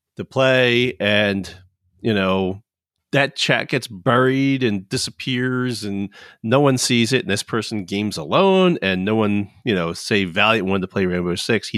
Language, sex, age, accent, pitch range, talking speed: English, male, 30-49, American, 105-140 Hz, 175 wpm